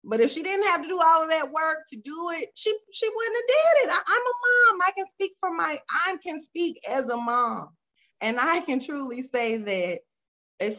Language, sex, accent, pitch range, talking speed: English, female, American, 175-260 Hz, 235 wpm